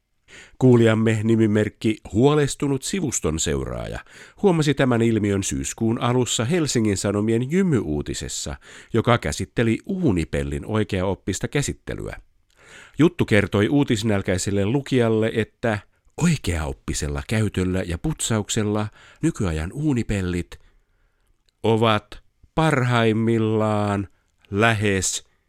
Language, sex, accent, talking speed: Finnish, male, native, 75 wpm